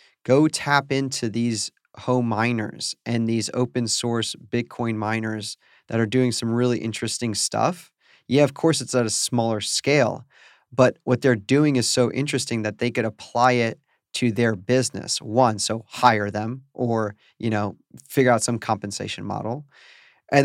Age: 30-49